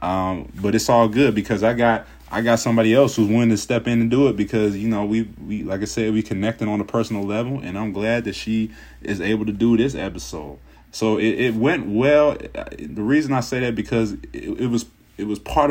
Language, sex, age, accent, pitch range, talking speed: English, male, 20-39, American, 95-120 Hz, 235 wpm